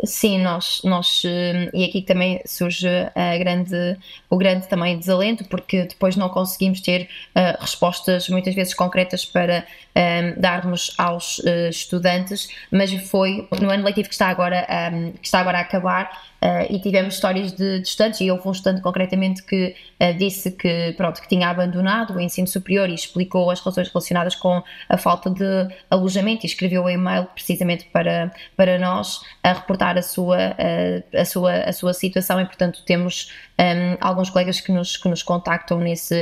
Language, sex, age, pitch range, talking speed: Portuguese, female, 20-39, 180-190 Hz, 175 wpm